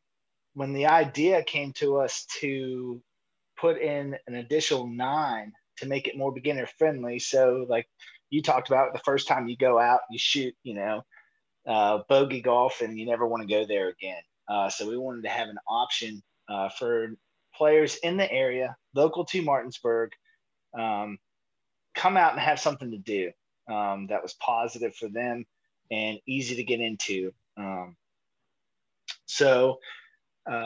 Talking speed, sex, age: 160 wpm, male, 30-49